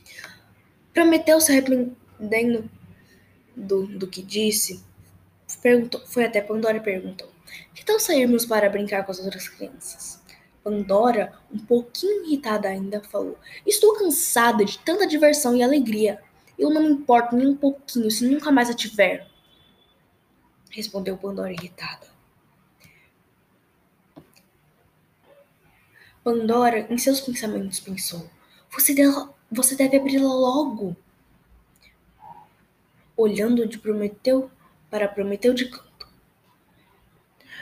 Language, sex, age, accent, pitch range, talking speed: Portuguese, female, 10-29, Brazilian, 200-265 Hz, 105 wpm